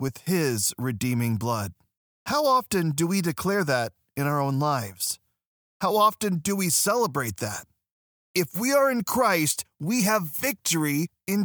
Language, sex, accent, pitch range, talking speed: English, male, American, 125-195 Hz, 150 wpm